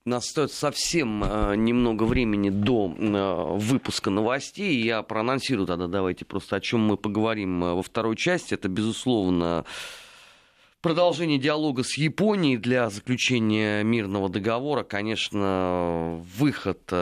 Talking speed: 115 wpm